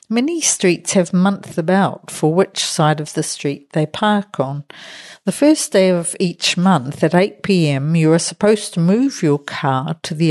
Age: 60-79